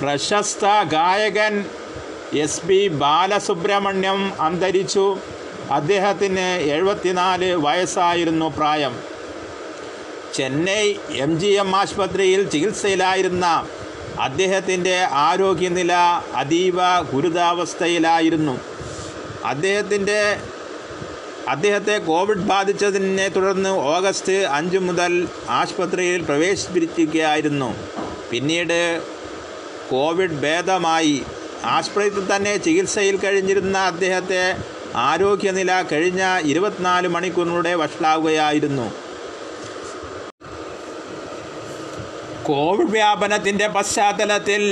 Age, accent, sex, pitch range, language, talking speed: 30-49, native, male, 175-200 Hz, Malayalam, 65 wpm